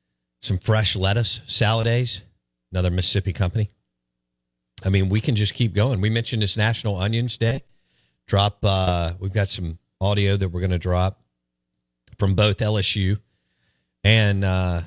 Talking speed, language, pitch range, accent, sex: 140 wpm, English, 80-110 Hz, American, male